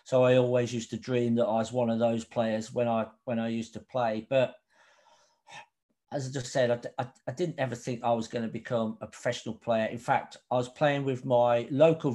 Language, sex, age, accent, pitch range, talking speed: English, male, 50-69, British, 120-135 Hz, 230 wpm